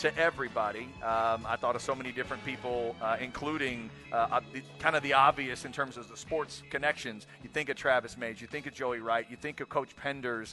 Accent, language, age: American, English, 40-59